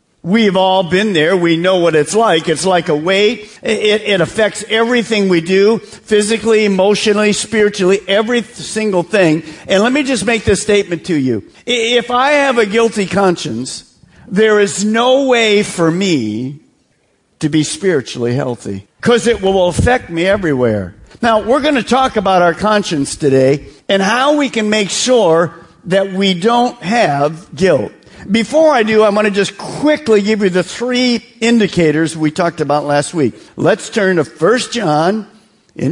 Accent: American